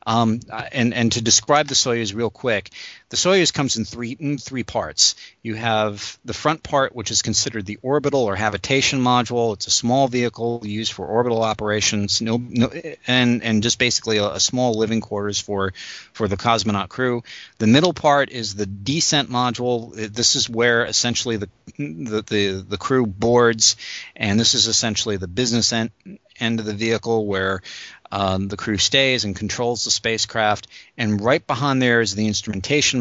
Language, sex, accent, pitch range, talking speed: English, male, American, 105-125 Hz, 180 wpm